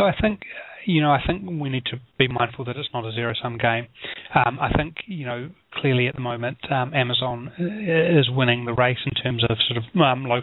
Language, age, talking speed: English, 30-49, 235 wpm